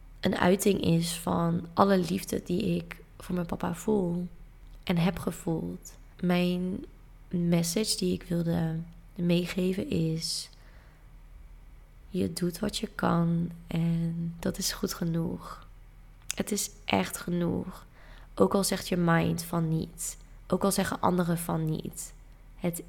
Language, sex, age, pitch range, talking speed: Dutch, female, 20-39, 165-185 Hz, 130 wpm